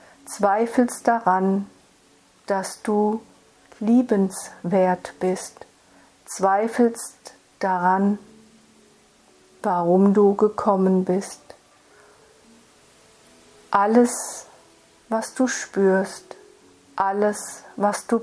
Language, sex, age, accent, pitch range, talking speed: German, female, 50-69, German, 195-225 Hz, 65 wpm